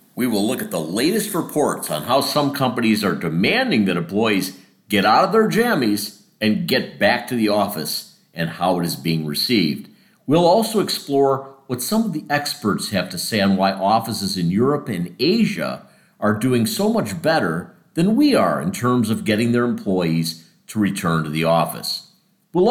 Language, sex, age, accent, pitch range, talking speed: English, male, 50-69, American, 105-170 Hz, 185 wpm